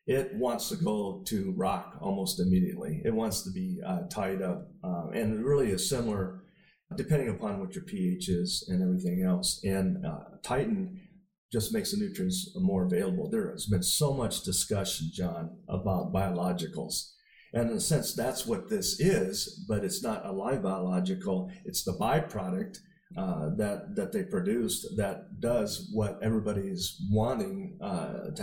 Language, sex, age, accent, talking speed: English, male, 40-59, American, 165 wpm